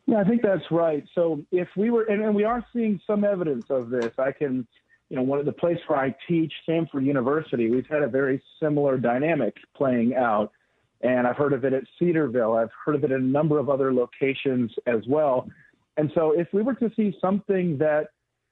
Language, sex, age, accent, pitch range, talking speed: English, male, 40-59, American, 135-170 Hz, 215 wpm